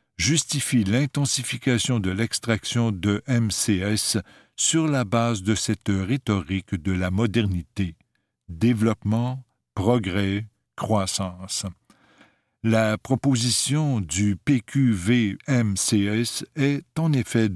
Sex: male